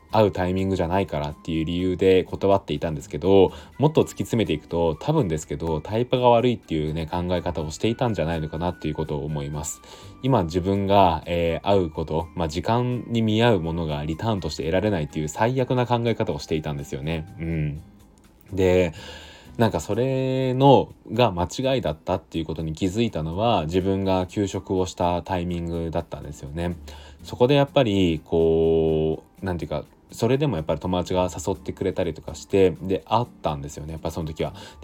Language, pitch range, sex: Japanese, 80-110 Hz, male